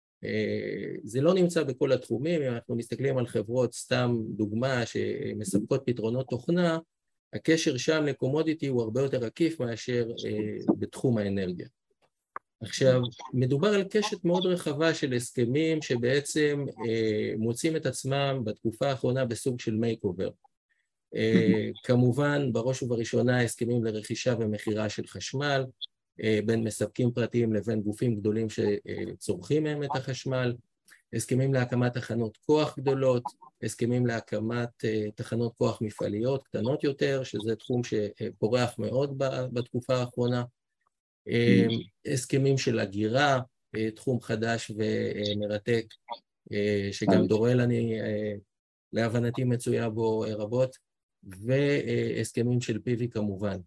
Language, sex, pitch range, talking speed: Hebrew, male, 110-130 Hz, 105 wpm